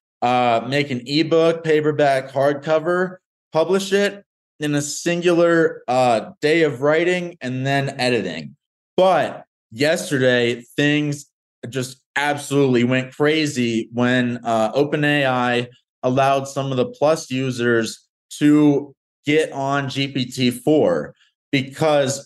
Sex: male